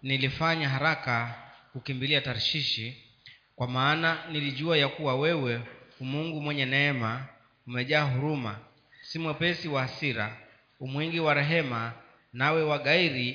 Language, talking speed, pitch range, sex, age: Swahili, 110 wpm, 125-150 Hz, male, 30-49